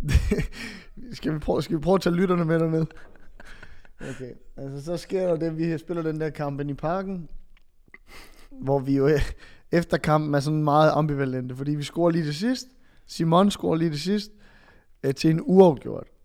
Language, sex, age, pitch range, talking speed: Danish, male, 20-39, 130-170 Hz, 175 wpm